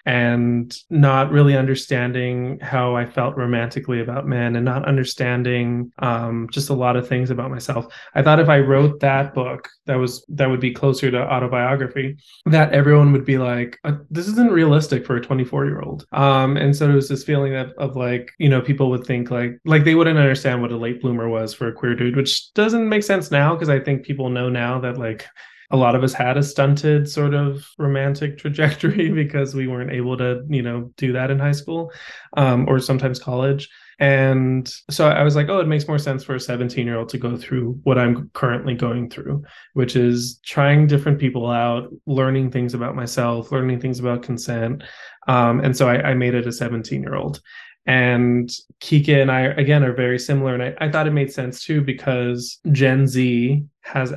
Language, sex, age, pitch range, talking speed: English, male, 20-39, 125-145 Hz, 205 wpm